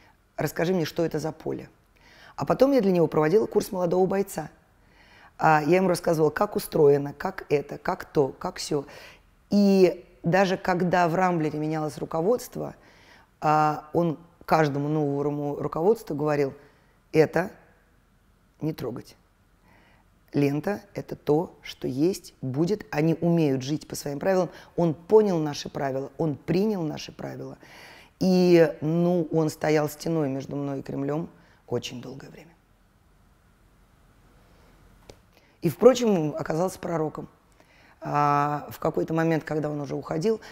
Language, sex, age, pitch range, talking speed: Russian, female, 30-49, 145-175 Hz, 125 wpm